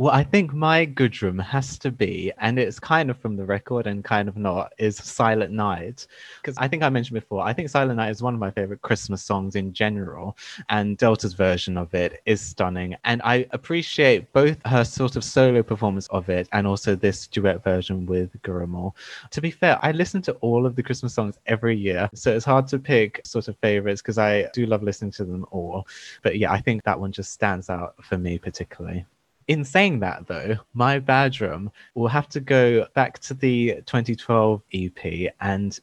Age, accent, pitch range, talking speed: 20-39, British, 100-130 Hz, 205 wpm